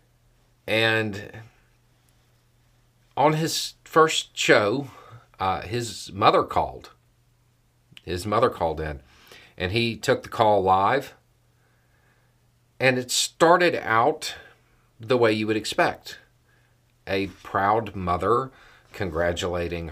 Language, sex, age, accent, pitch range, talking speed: English, male, 40-59, American, 100-125 Hz, 95 wpm